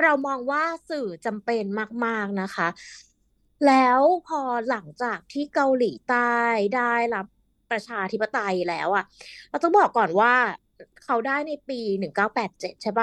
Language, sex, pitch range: Thai, female, 200-270 Hz